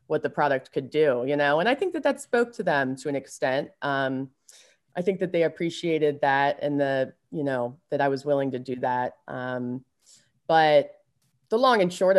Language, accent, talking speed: English, American, 205 wpm